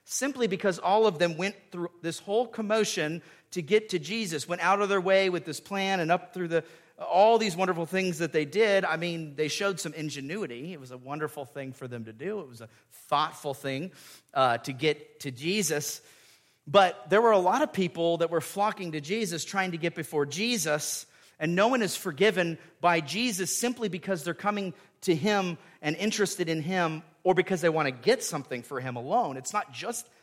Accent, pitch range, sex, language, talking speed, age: American, 150-195 Hz, male, English, 210 wpm, 40-59